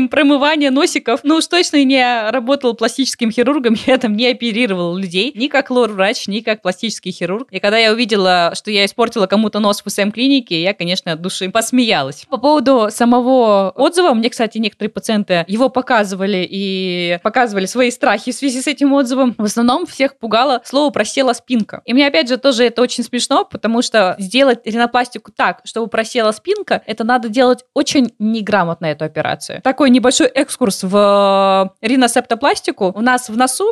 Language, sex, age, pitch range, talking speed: Russian, female, 20-39, 200-255 Hz, 175 wpm